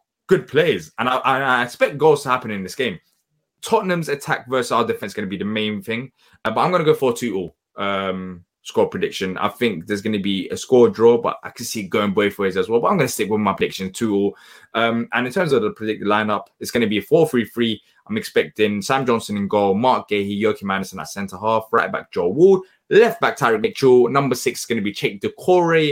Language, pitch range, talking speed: English, 105-135 Hz, 255 wpm